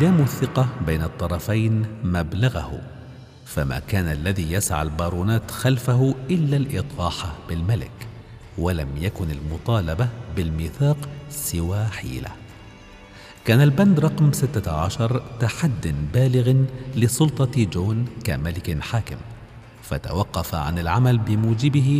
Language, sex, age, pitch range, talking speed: Arabic, male, 50-69, 85-125 Hz, 95 wpm